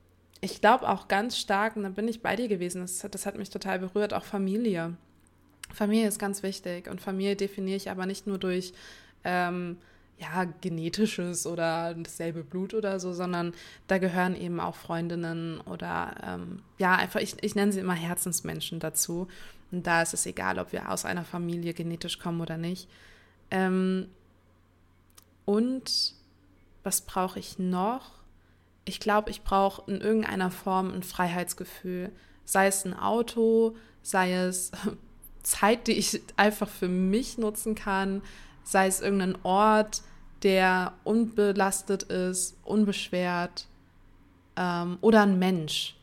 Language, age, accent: English, 20-39, German